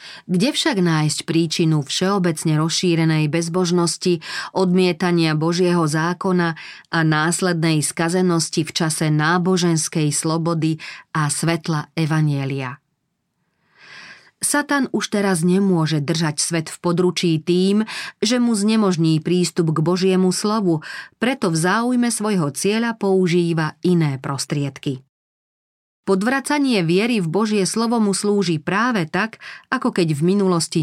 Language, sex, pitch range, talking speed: Slovak, female, 160-195 Hz, 110 wpm